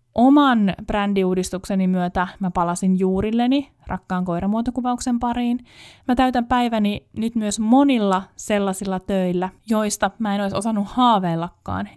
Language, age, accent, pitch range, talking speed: Finnish, 20-39, native, 175-225 Hz, 115 wpm